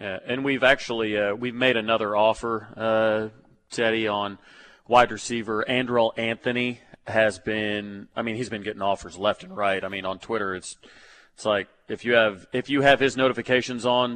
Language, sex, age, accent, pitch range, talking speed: English, male, 30-49, American, 110-125 Hz, 180 wpm